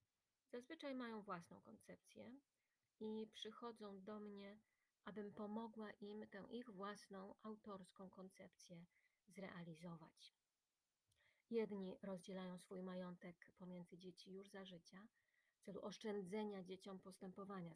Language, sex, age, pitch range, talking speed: Polish, female, 30-49, 185-210 Hz, 105 wpm